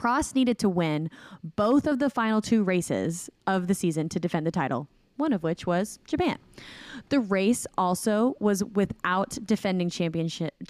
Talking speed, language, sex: 165 wpm, English, female